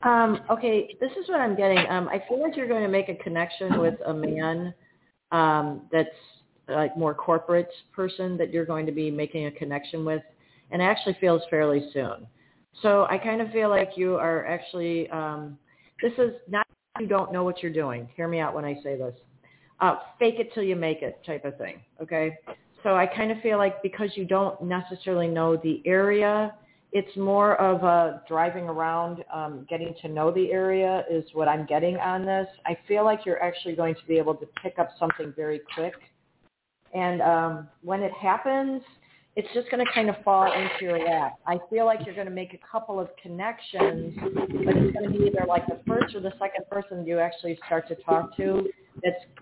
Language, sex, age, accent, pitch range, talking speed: English, female, 40-59, American, 160-195 Hz, 205 wpm